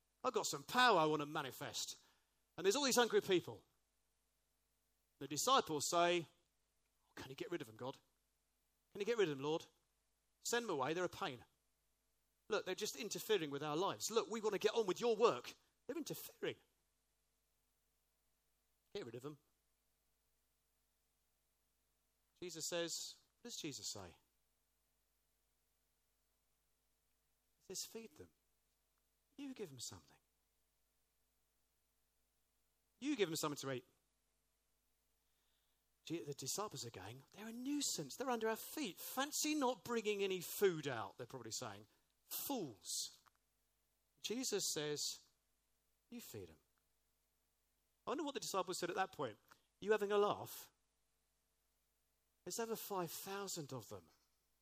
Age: 40-59